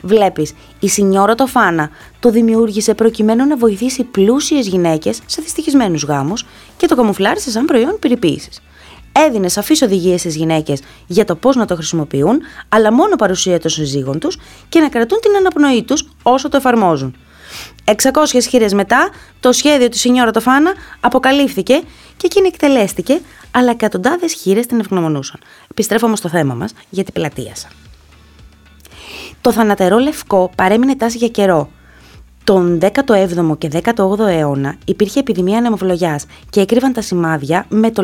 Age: 20-39